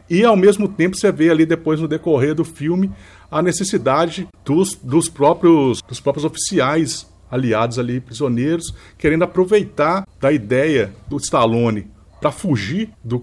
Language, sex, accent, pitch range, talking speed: Portuguese, male, Brazilian, 130-175 Hz, 135 wpm